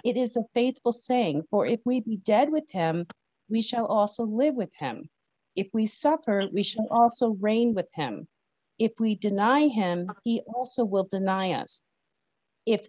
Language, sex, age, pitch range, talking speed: English, female, 50-69, 185-235 Hz, 170 wpm